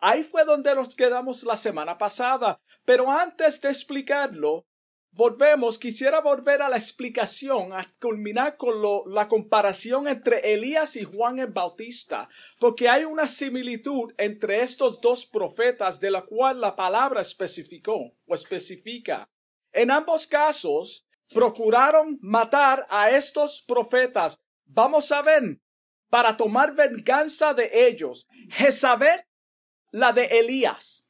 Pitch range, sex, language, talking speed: 230-300 Hz, male, Spanish, 125 wpm